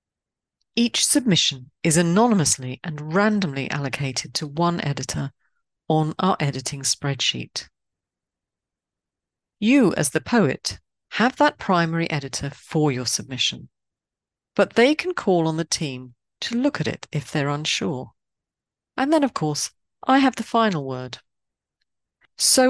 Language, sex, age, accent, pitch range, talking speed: English, female, 40-59, British, 140-205 Hz, 130 wpm